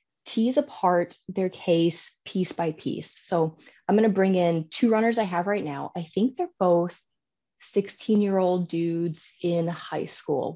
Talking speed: 170 wpm